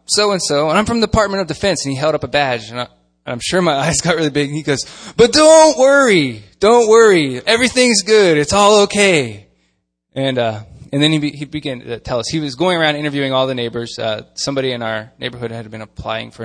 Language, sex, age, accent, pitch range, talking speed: English, male, 20-39, American, 115-185 Hz, 235 wpm